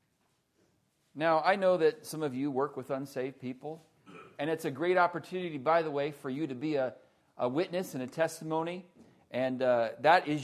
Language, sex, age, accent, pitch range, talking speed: English, male, 40-59, American, 145-180 Hz, 190 wpm